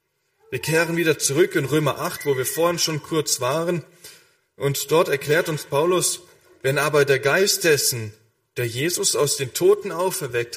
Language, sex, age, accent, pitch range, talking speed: German, male, 10-29, German, 130-180 Hz, 165 wpm